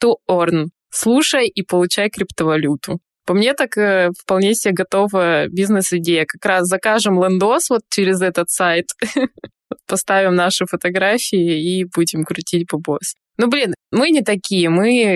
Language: Russian